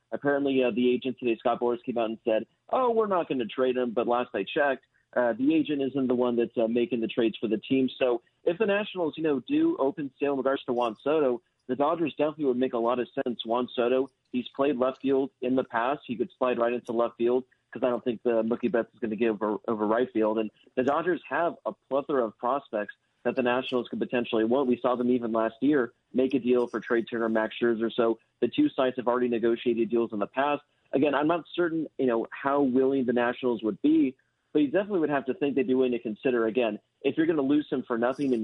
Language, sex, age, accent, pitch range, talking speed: English, male, 40-59, American, 115-135 Hz, 255 wpm